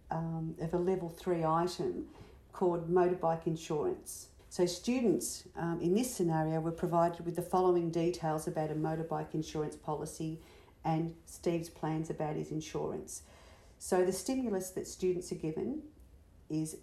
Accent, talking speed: Australian, 145 wpm